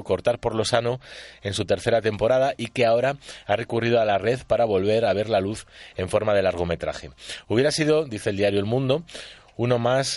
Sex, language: male, Spanish